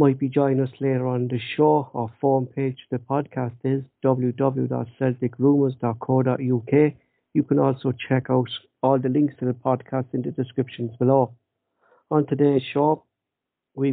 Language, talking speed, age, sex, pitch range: English, 150 wpm, 60-79, male, 125-140 Hz